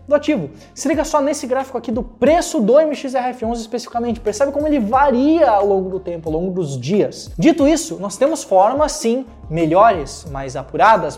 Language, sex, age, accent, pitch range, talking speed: Portuguese, male, 20-39, Brazilian, 195-275 Hz, 180 wpm